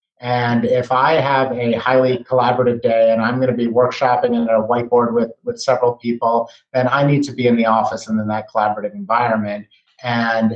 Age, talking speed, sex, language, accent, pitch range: 30-49, 200 wpm, male, English, American, 110-125 Hz